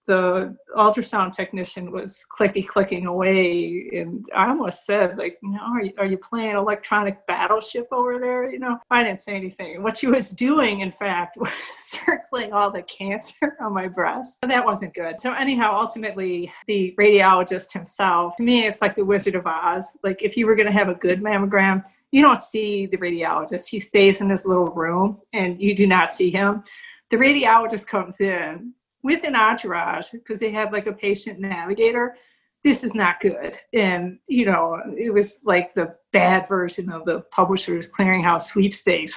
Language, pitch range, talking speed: English, 185-225 Hz, 180 wpm